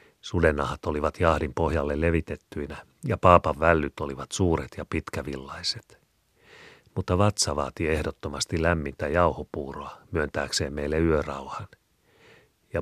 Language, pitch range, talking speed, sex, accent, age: Finnish, 75-85 Hz, 105 wpm, male, native, 40-59